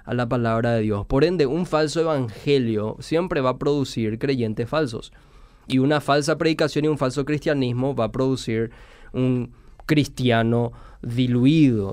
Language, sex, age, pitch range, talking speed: Spanish, male, 20-39, 120-145 Hz, 150 wpm